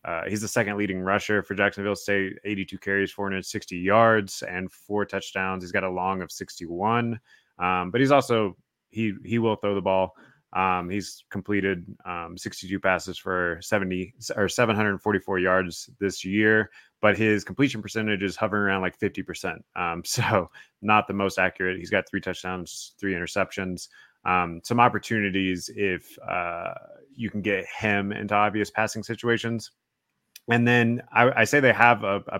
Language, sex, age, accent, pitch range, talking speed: English, male, 20-39, American, 95-110 Hz, 165 wpm